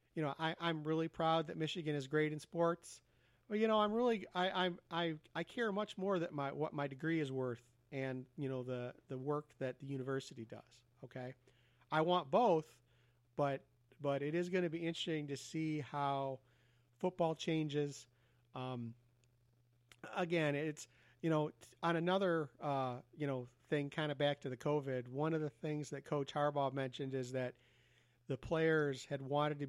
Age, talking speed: 40-59, 185 wpm